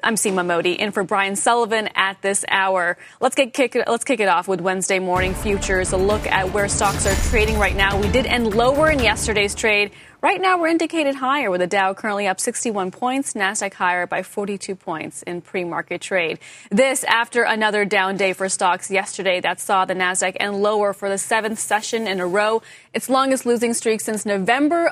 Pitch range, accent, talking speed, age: 190-235 Hz, American, 200 wpm, 30-49